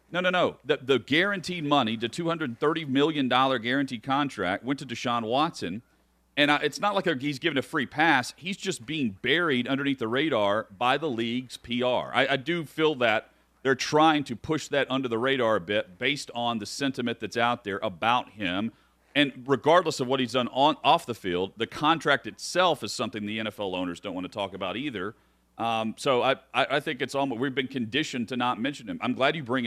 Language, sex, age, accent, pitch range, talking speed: English, male, 40-59, American, 110-145 Hz, 205 wpm